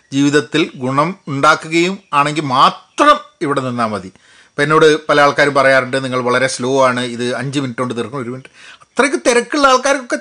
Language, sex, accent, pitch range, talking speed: Malayalam, male, native, 135-220 Hz, 160 wpm